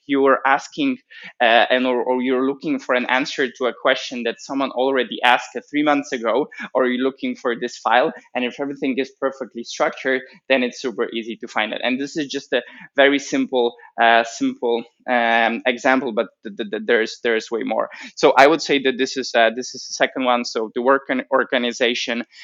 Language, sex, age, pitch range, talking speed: English, male, 20-39, 125-140 Hz, 205 wpm